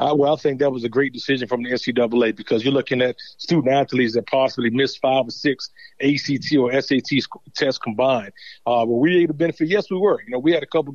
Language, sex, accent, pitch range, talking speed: English, male, American, 125-150 Hz, 240 wpm